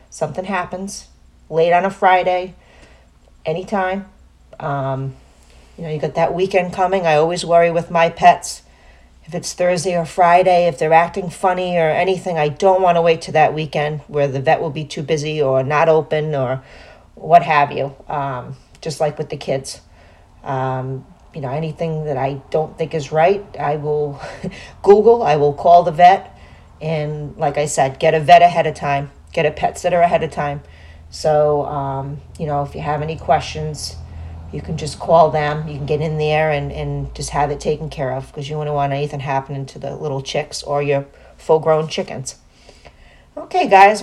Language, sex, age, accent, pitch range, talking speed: English, female, 40-59, American, 140-175 Hz, 190 wpm